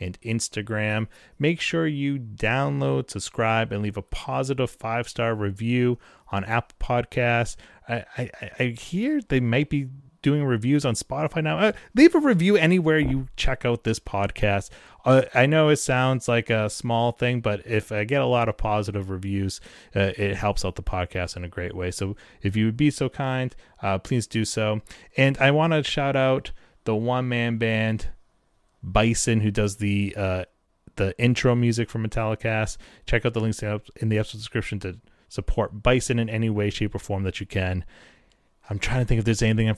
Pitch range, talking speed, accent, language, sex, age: 105-130 Hz, 190 wpm, American, English, male, 30-49